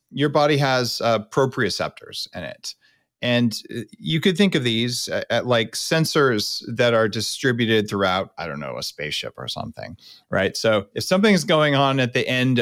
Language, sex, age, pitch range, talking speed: English, male, 40-59, 110-155 Hz, 180 wpm